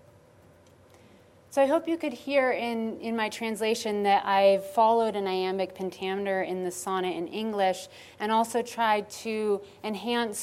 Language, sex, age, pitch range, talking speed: English, female, 30-49, 190-220 Hz, 150 wpm